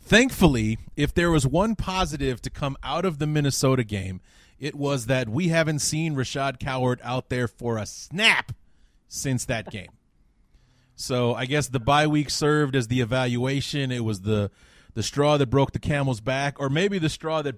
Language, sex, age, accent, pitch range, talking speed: English, male, 30-49, American, 115-145 Hz, 185 wpm